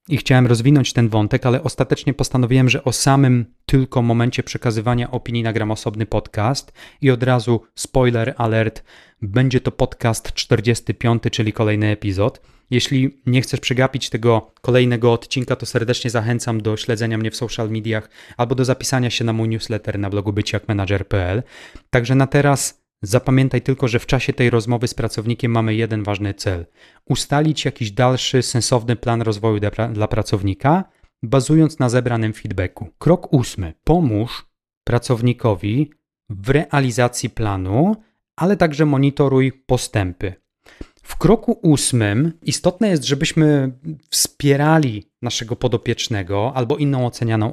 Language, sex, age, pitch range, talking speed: Polish, male, 30-49, 110-135 Hz, 135 wpm